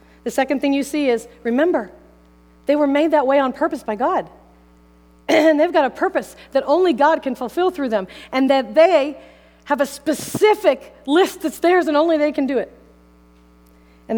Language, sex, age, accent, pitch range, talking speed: English, female, 40-59, American, 185-265 Hz, 185 wpm